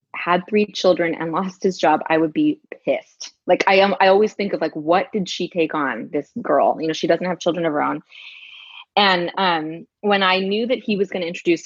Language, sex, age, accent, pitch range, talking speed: English, female, 20-39, American, 165-205 Hz, 235 wpm